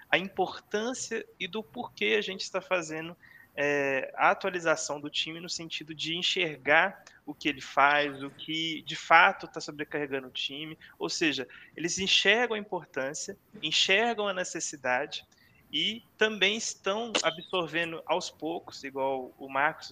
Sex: male